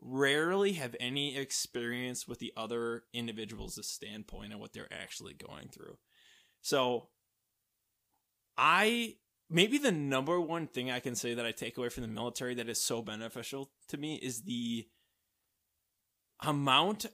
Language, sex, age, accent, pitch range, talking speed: English, male, 20-39, American, 115-140 Hz, 145 wpm